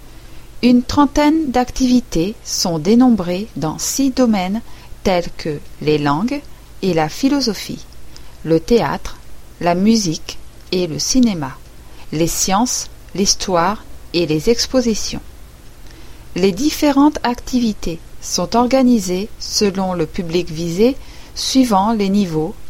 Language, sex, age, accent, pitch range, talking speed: French, female, 40-59, French, 170-240 Hz, 105 wpm